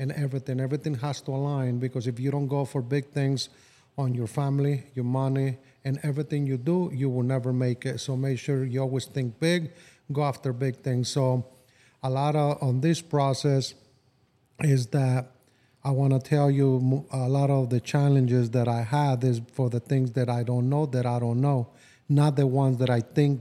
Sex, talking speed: male, 205 wpm